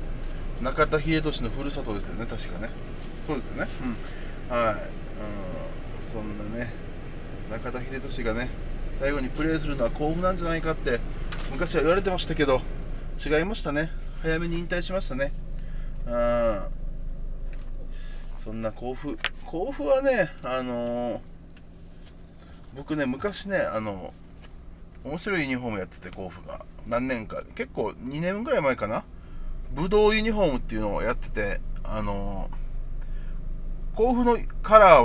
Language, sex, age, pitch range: Japanese, male, 20-39, 105-160 Hz